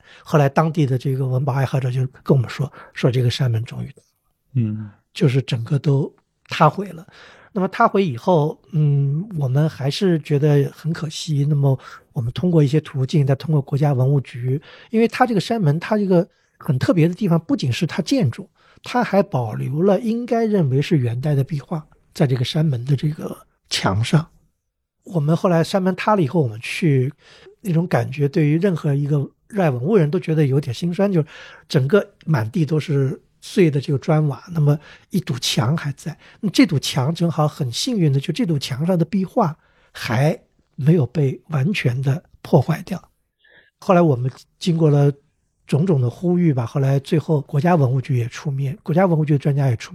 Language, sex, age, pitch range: Chinese, male, 60-79, 135-170 Hz